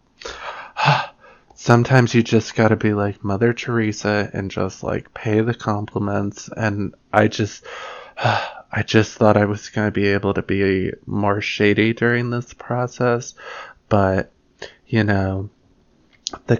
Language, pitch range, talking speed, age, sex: English, 100-115 Hz, 135 wpm, 20-39, male